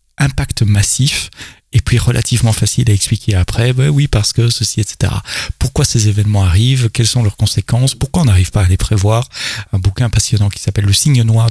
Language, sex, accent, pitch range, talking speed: French, male, French, 105-130 Hz, 200 wpm